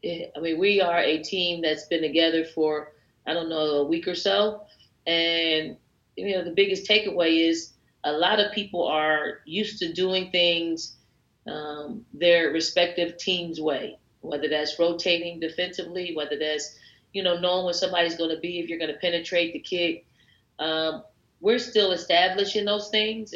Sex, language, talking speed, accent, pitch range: female, English, 165 wpm, American, 160-190 Hz